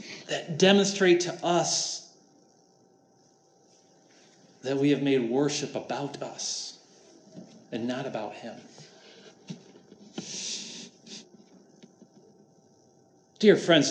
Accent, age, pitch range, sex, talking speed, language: American, 40-59, 130-175 Hz, male, 75 wpm, English